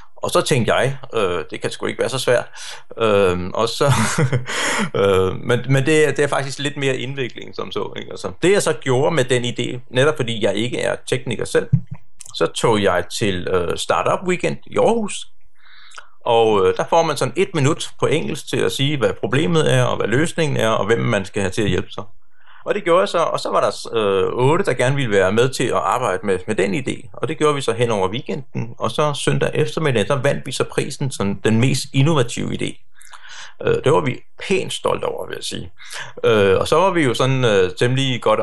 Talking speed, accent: 210 wpm, native